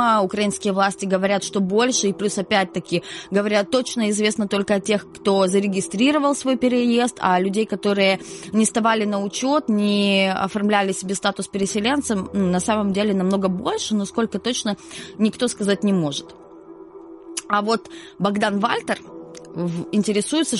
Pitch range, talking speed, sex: 195-245 Hz, 135 wpm, female